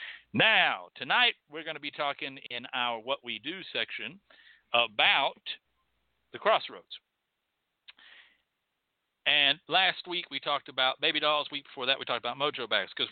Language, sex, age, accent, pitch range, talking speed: English, male, 60-79, American, 135-190 Hz, 150 wpm